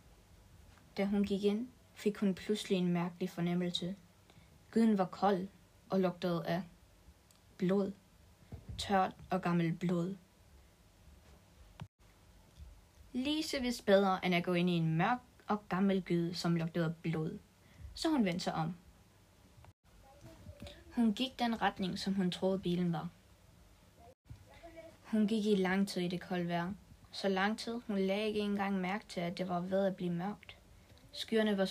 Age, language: 20-39, Danish